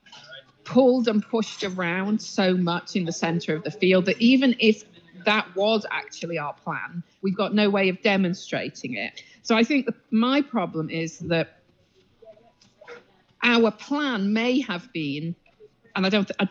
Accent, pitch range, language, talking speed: British, 165-220 Hz, English, 150 wpm